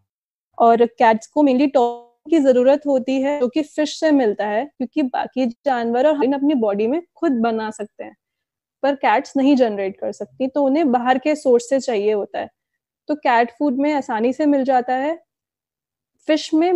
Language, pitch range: Hindi, 240-295 Hz